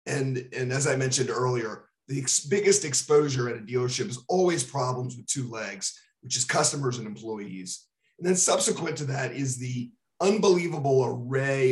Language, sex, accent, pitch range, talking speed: English, male, American, 120-150 Hz, 165 wpm